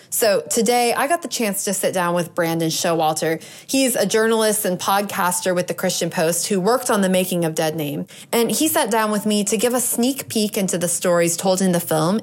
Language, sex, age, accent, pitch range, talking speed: English, female, 20-39, American, 180-240 Hz, 230 wpm